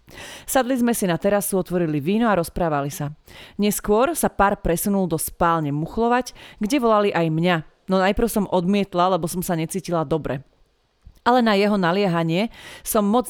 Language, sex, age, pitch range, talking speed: Slovak, female, 30-49, 170-220 Hz, 160 wpm